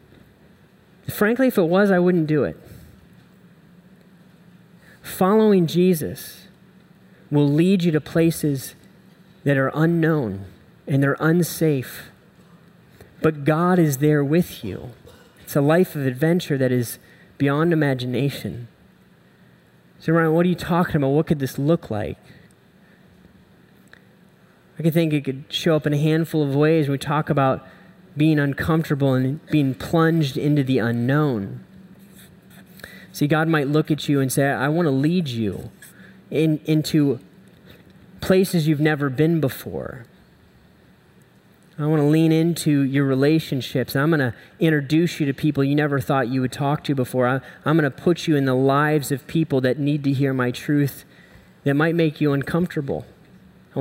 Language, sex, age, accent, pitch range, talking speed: English, male, 30-49, American, 140-170 Hz, 150 wpm